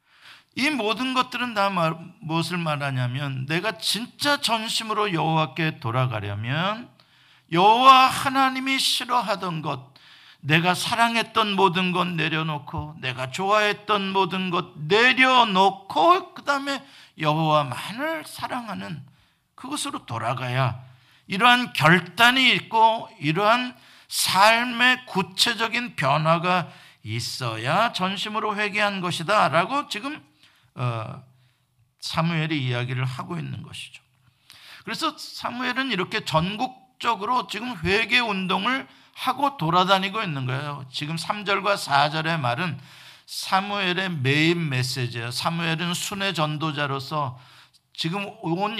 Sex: male